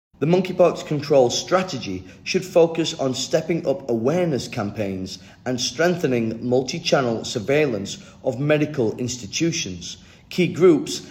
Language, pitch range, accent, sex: Chinese, 120-160 Hz, British, male